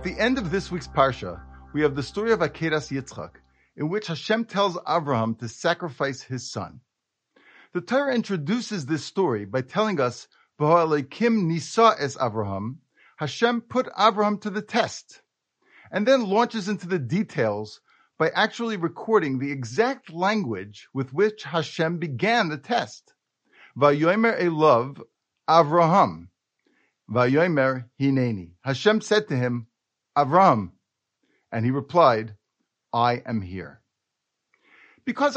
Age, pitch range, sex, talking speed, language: 50-69, 125-210 Hz, male, 130 wpm, English